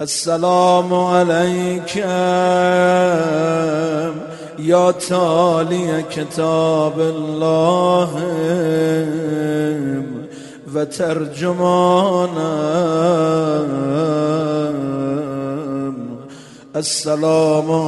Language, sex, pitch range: English, male, 155-180 Hz